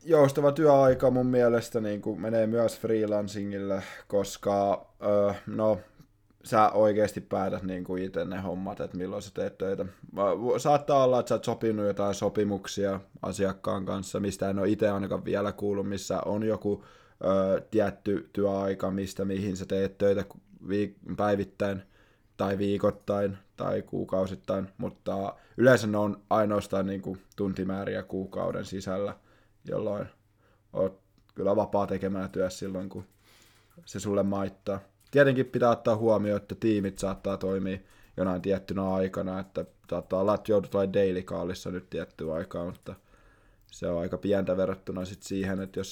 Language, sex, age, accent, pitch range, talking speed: Finnish, male, 20-39, native, 95-105 Hz, 140 wpm